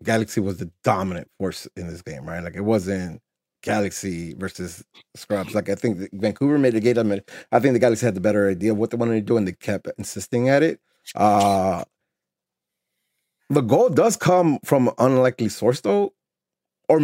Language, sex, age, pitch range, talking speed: English, male, 30-49, 105-125 Hz, 190 wpm